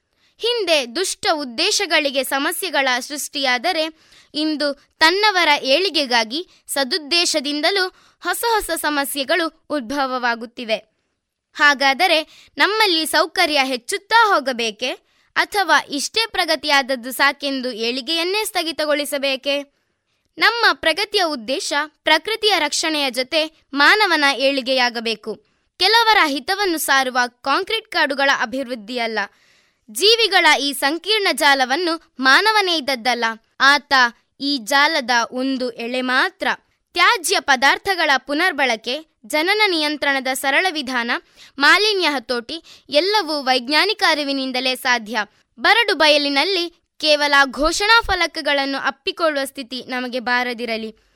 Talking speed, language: 85 wpm, Kannada